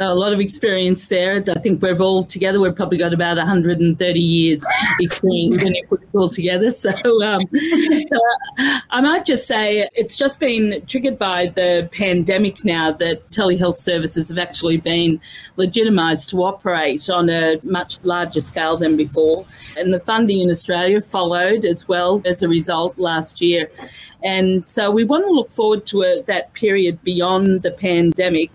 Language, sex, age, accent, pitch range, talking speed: English, female, 40-59, Australian, 170-210 Hz, 170 wpm